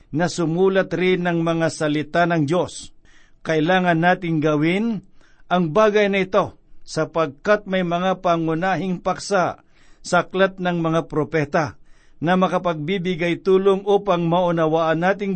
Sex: male